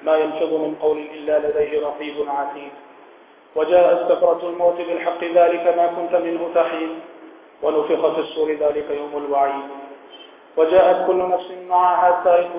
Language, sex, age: Hindi, male, 40-59